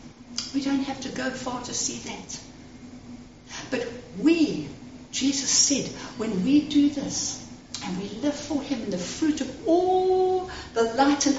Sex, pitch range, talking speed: female, 240-300 Hz, 160 wpm